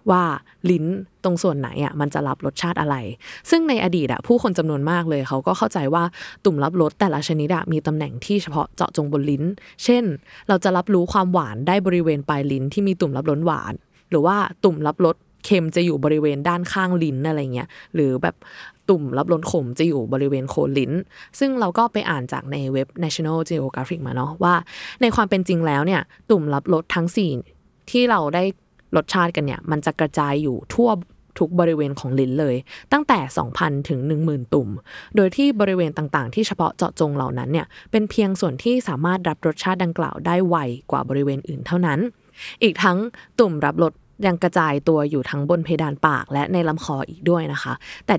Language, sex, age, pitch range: Thai, female, 20-39, 145-190 Hz